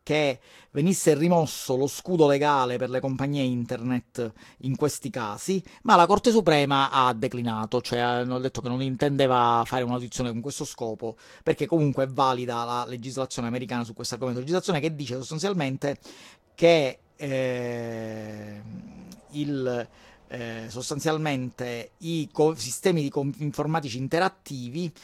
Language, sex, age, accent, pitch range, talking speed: Italian, male, 40-59, native, 125-155 Hz, 130 wpm